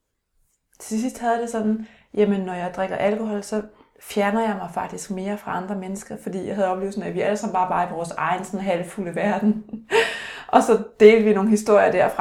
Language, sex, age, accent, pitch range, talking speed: Danish, female, 30-49, native, 185-225 Hz, 215 wpm